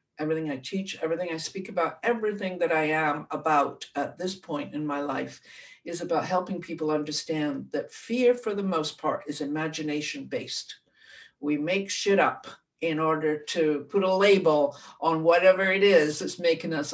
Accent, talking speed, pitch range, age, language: American, 170 wpm, 155-185 Hz, 60-79, English